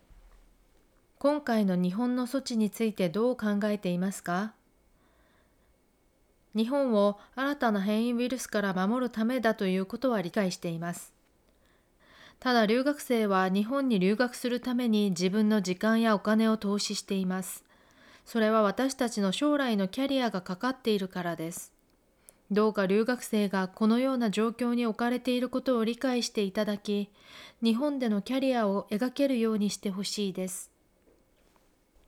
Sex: female